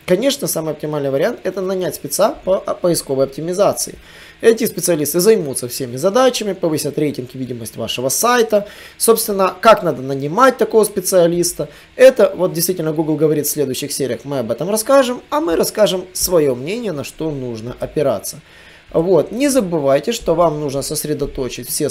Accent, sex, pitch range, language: native, male, 135-195 Hz, Russian